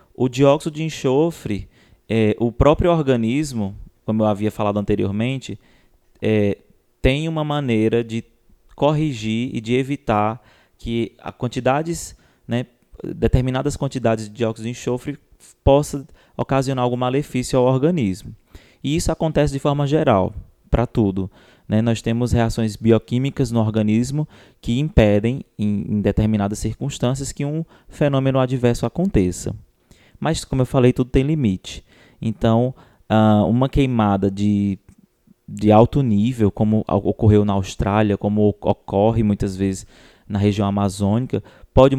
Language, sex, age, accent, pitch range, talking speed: Portuguese, male, 20-39, Brazilian, 105-130 Hz, 130 wpm